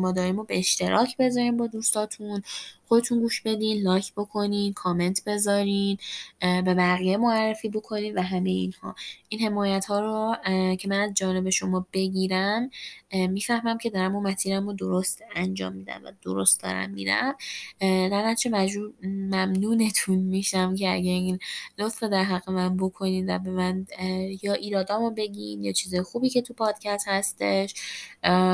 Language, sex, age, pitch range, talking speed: Persian, female, 10-29, 185-220 Hz, 140 wpm